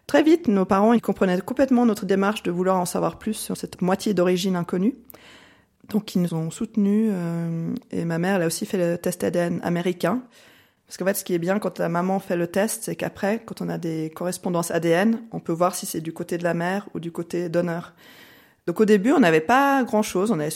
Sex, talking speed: female, 235 wpm